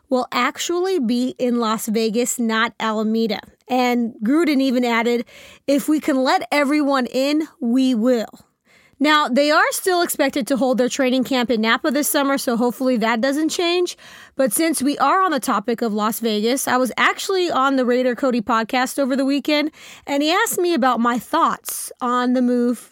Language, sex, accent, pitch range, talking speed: English, female, American, 240-305 Hz, 185 wpm